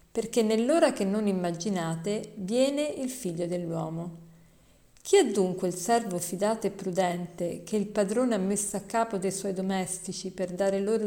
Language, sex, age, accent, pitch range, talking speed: Italian, female, 50-69, native, 180-230 Hz, 165 wpm